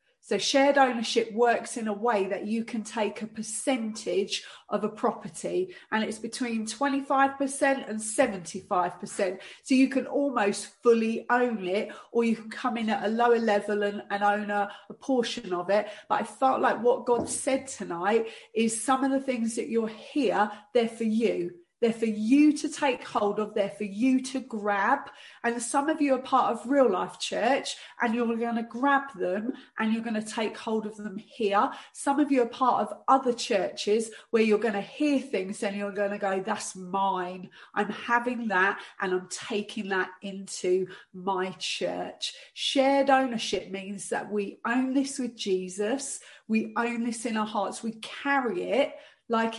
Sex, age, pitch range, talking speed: female, 30-49, 200-245 Hz, 185 wpm